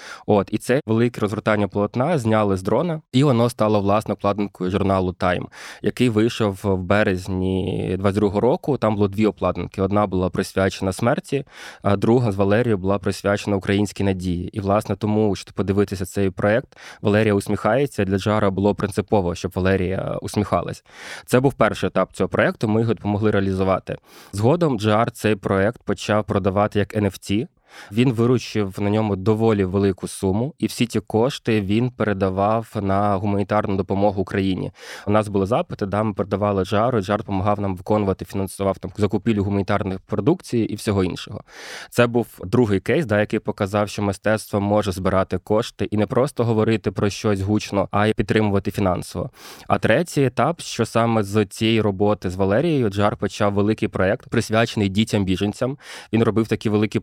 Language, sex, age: Ukrainian, male, 20-39